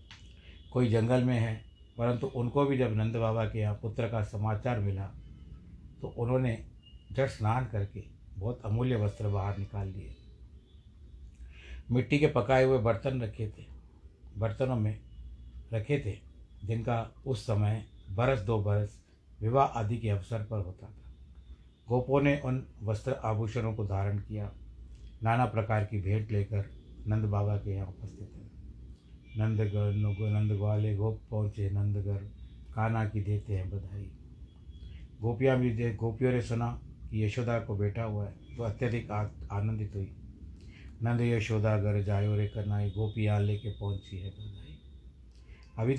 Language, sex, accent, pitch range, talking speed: Hindi, male, native, 95-115 Hz, 145 wpm